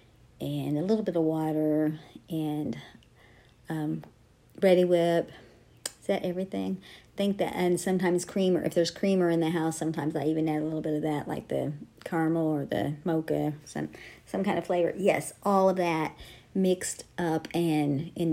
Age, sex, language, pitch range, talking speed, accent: 40-59, male, English, 155-200 Hz, 175 wpm, American